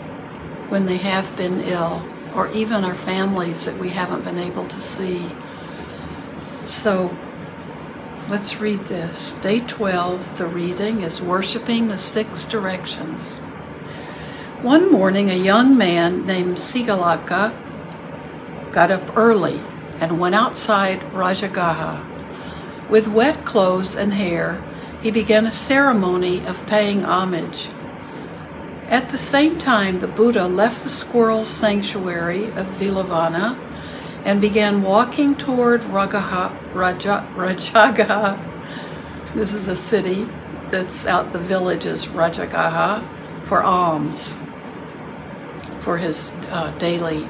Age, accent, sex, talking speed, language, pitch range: 60-79, American, female, 110 wpm, English, 180-220 Hz